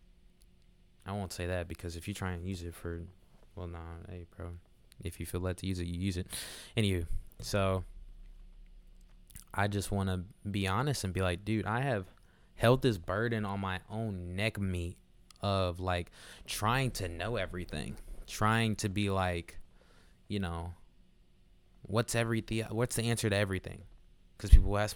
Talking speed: 175 wpm